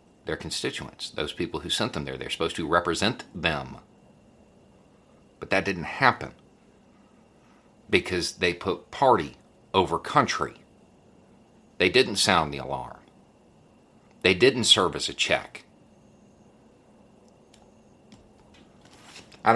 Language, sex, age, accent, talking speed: English, male, 50-69, American, 105 wpm